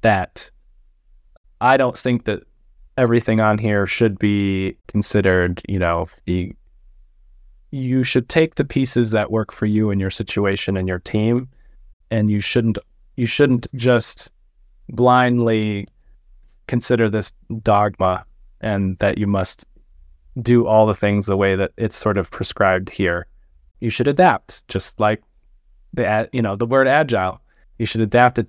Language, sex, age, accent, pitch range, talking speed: English, male, 20-39, American, 100-130 Hz, 145 wpm